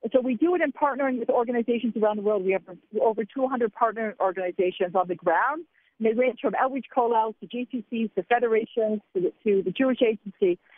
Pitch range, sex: 205-260 Hz, female